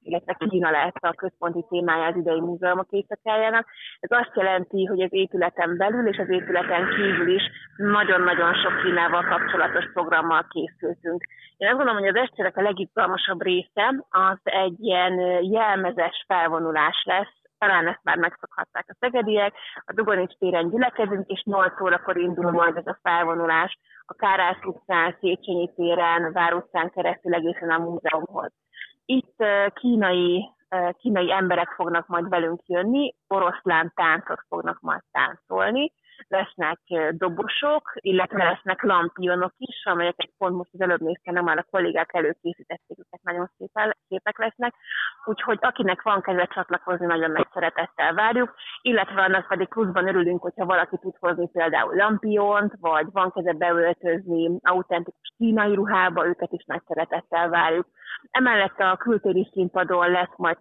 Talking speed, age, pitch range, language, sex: 140 wpm, 30-49, 170-200 Hz, Hungarian, female